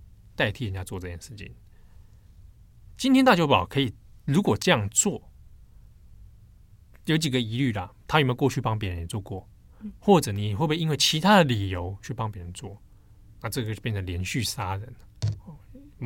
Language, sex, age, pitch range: Chinese, male, 20-39, 100-125 Hz